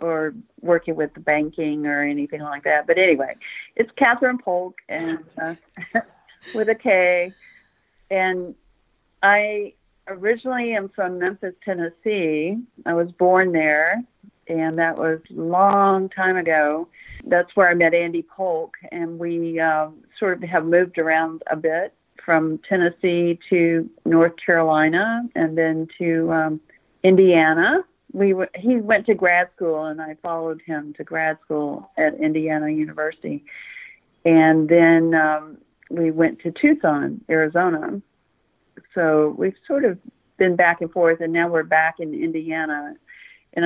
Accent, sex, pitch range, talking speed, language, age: American, female, 160-190 Hz, 140 wpm, English, 50-69